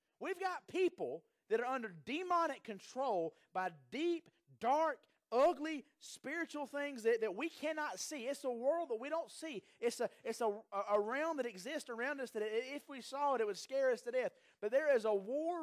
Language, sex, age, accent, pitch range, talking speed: English, male, 30-49, American, 220-315 Hz, 190 wpm